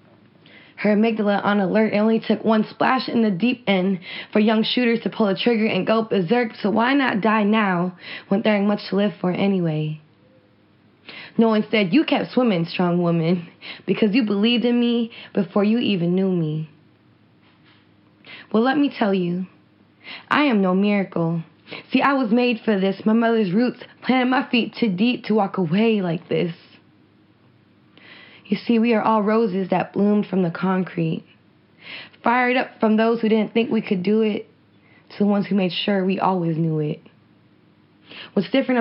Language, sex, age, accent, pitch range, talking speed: English, female, 20-39, American, 185-225 Hz, 180 wpm